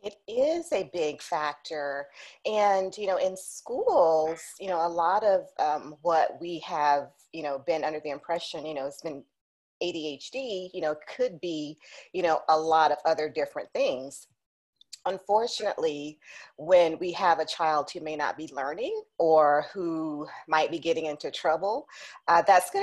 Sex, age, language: female, 30-49, English